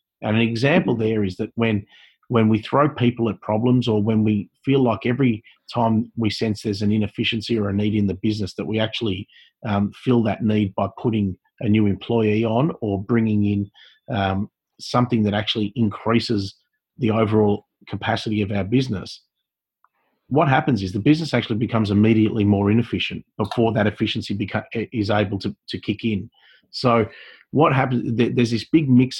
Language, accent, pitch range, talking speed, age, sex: English, Australian, 105-120 Hz, 175 wpm, 30-49, male